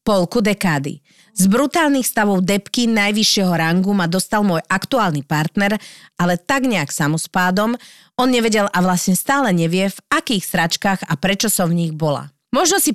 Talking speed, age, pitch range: 160 wpm, 40-59, 175-220 Hz